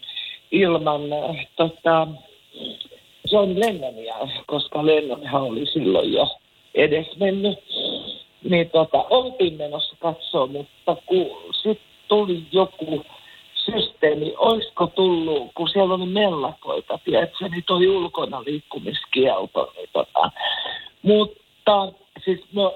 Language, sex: Finnish, male